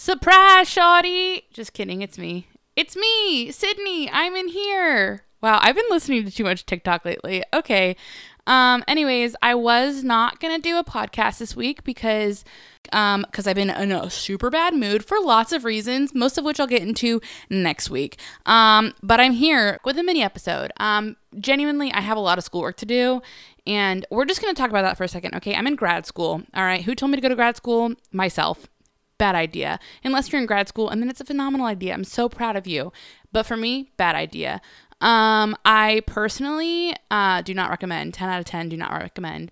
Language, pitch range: English, 195-275 Hz